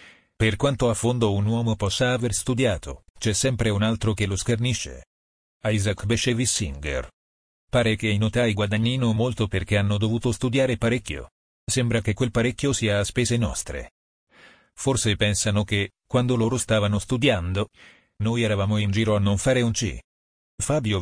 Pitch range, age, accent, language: 90-120 Hz, 40-59, native, Italian